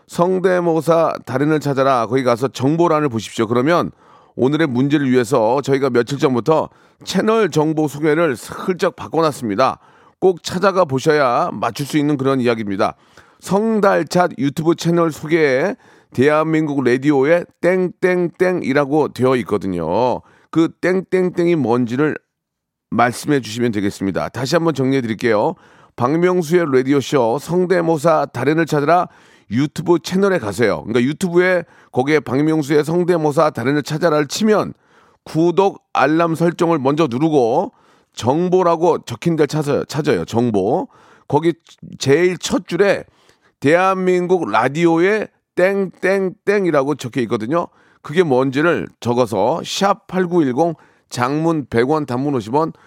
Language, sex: Korean, male